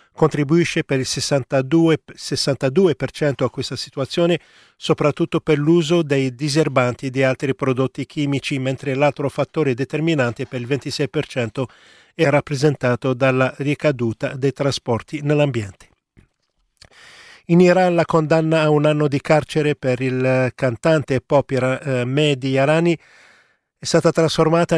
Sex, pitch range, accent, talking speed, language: male, 130-155 Hz, native, 125 wpm, Italian